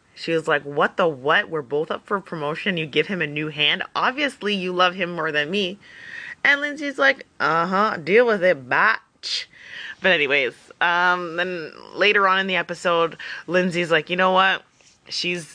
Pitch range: 170-255 Hz